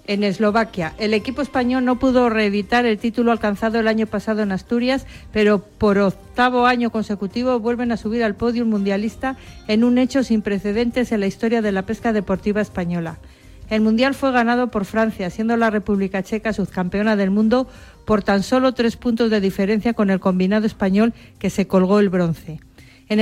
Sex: female